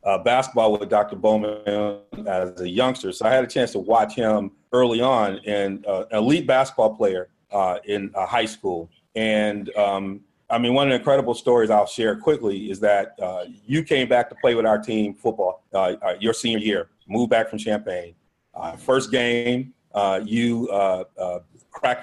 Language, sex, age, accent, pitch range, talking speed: English, male, 40-59, American, 105-130 Hz, 185 wpm